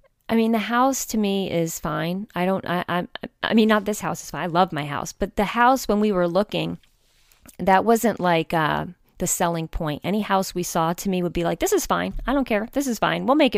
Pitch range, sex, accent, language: 170-200 Hz, female, American, English